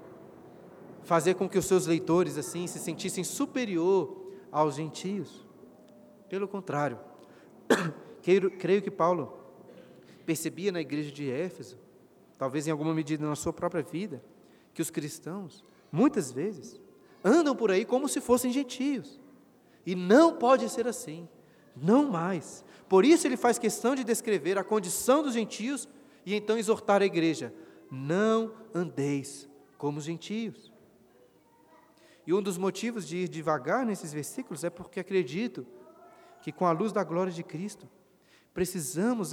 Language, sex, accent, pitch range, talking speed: Portuguese, male, Brazilian, 160-210 Hz, 140 wpm